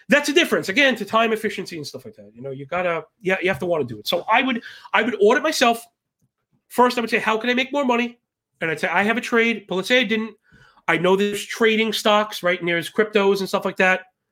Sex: male